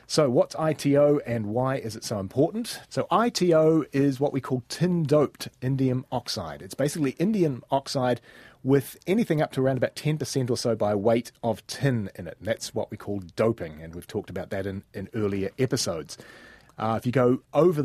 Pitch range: 115-145 Hz